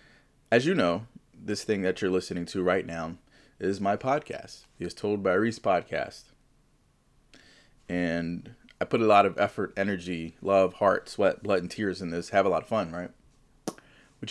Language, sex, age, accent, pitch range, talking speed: English, male, 30-49, American, 90-115 Hz, 175 wpm